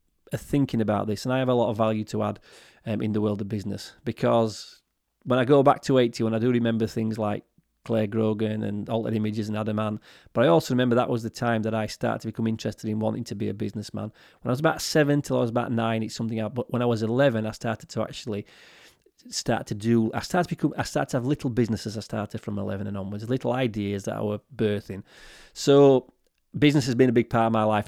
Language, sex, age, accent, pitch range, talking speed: English, male, 30-49, British, 110-125 Hz, 250 wpm